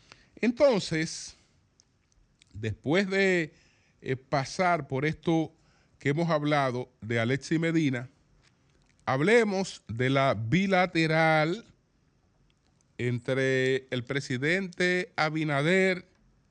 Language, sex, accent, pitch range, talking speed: Spanish, male, American, 130-185 Hz, 75 wpm